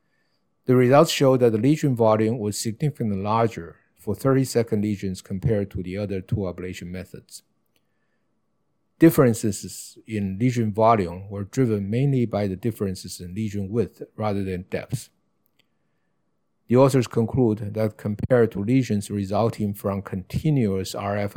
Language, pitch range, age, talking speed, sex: English, 100-120 Hz, 50-69, 130 wpm, male